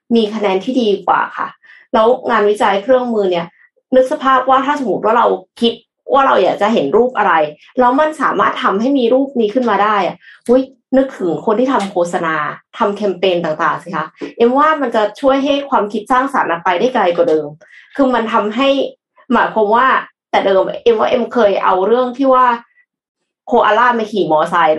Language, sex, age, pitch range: Thai, female, 20-39, 200-260 Hz